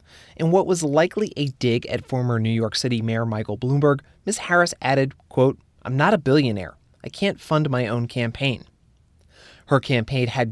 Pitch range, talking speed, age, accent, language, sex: 115-145 Hz, 175 wpm, 30-49, American, English, male